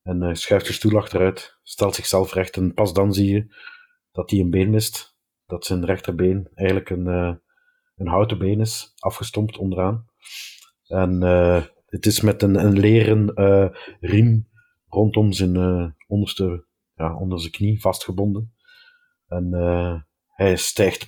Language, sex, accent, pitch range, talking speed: Dutch, male, Dutch, 90-110 Hz, 150 wpm